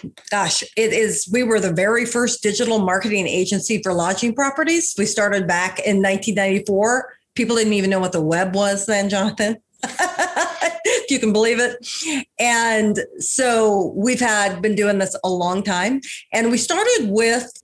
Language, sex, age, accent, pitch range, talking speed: English, female, 40-59, American, 185-230 Hz, 165 wpm